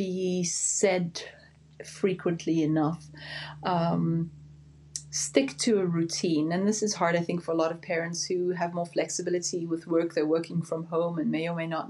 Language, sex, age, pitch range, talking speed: English, female, 30-49, 165-185 Hz, 170 wpm